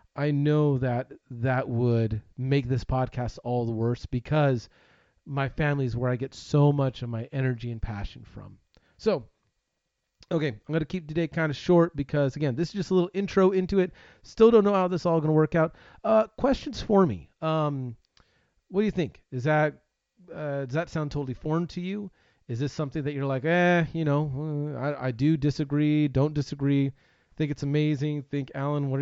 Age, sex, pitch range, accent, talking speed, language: 30-49, male, 130-160 Hz, American, 200 wpm, English